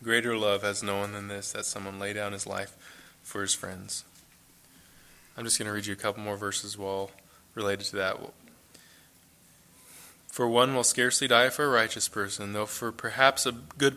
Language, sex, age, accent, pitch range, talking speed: English, male, 20-39, American, 100-115 Hz, 190 wpm